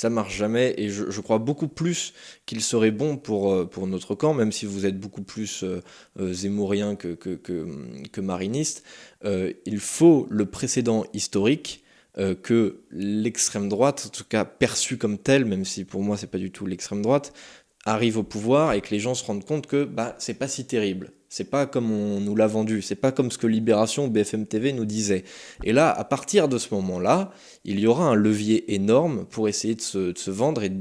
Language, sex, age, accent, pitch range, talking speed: French, male, 20-39, French, 100-120 Hz, 220 wpm